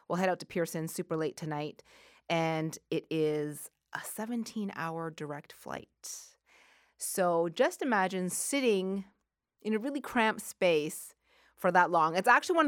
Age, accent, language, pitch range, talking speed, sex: 30-49, American, English, 175-235 Hz, 140 wpm, female